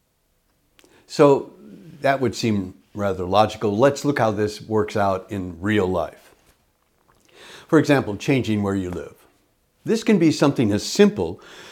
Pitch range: 100-125 Hz